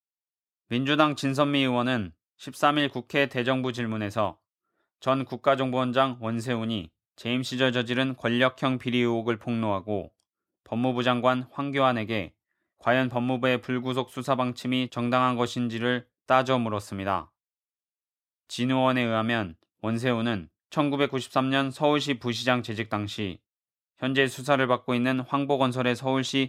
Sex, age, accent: male, 20-39, native